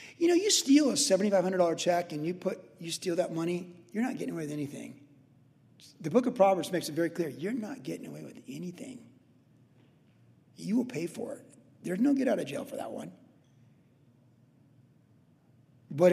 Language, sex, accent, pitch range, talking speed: English, male, American, 145-200 Hz, 180 wpm